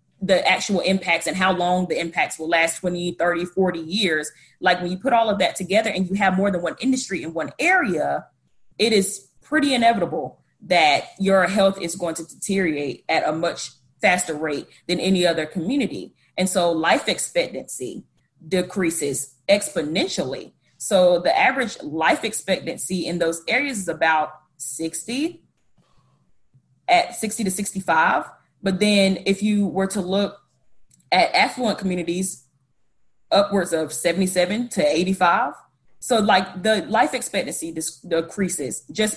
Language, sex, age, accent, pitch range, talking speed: English, female, 20-39, American, 170-205 Hz, 145 wpm